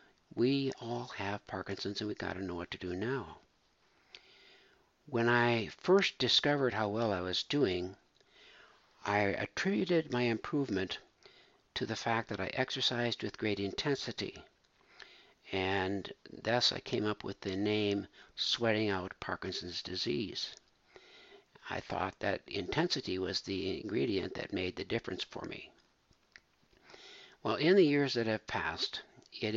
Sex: male